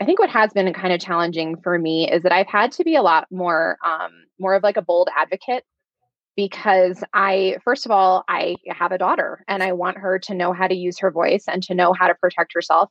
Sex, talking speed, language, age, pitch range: female, 245 wpm, English, 20-39, 175-205 Hz